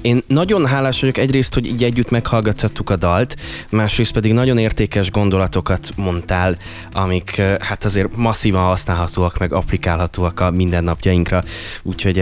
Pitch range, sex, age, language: 90-110 Hz, male, 20-39, Hungarian